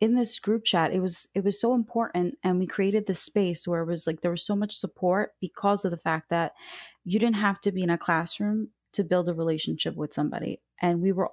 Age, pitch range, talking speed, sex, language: 20-39, 170-195 Hz, 245 wpm, female, English